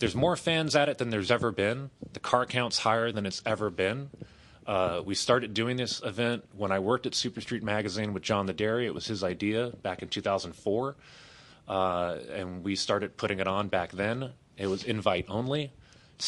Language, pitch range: English, 95-120 Hz